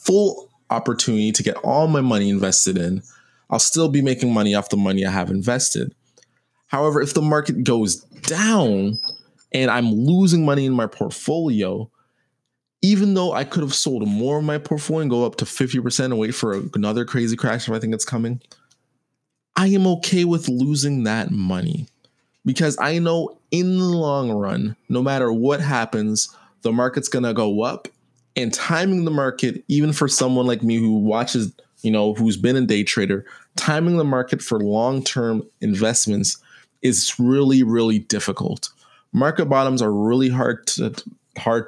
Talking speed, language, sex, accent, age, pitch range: 170 wpm, English, male, American, 20-39, 110-145 Hz